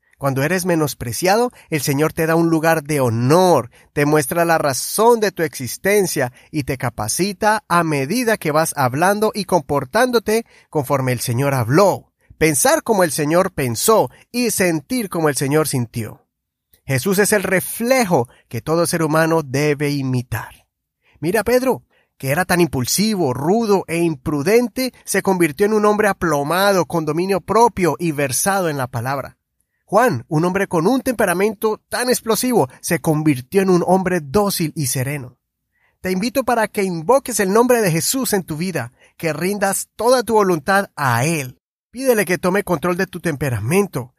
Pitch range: 155-210 Hz